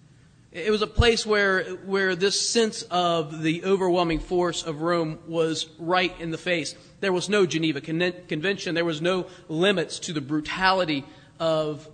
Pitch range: 160-225 Hz